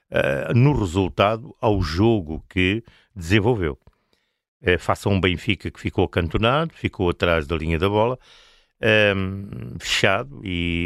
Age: 50-69